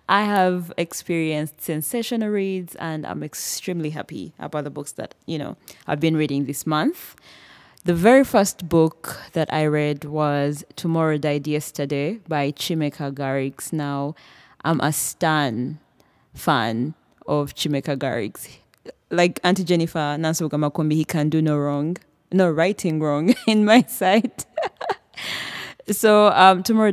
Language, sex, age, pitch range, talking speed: English, female, 20-39, 145-175 Hz, 135 wpm